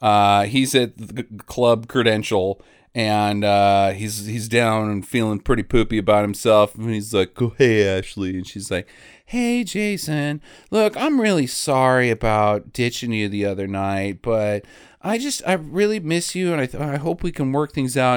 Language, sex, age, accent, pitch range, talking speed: English, male, 40-59, American, 120-200 Hz, 185 wpm